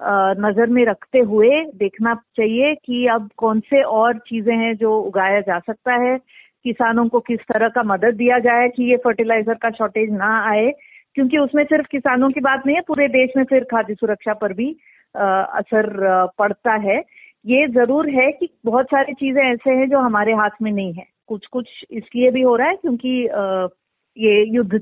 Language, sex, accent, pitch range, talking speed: Hindi, female, native, 215-260 Hz, 185 wpm